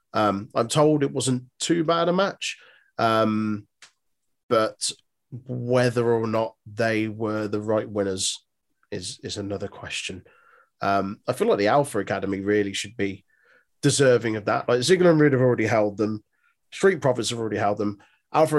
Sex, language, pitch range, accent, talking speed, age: male, English, 105-120 Hz, British, 165 wpm, 30-49